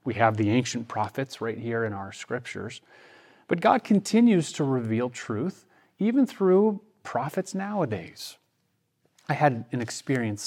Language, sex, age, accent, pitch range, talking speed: English, male, 30-49, American, 105-130 Hz, 140 wpm